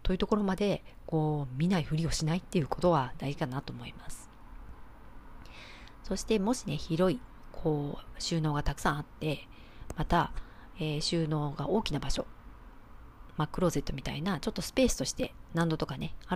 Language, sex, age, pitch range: Japanese, female, 40-59, 145-210 Hz